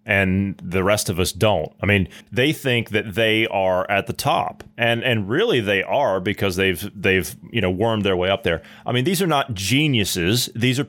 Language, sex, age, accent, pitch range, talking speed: English, male, 30-49, American, 105-135 Hz, 215 wpm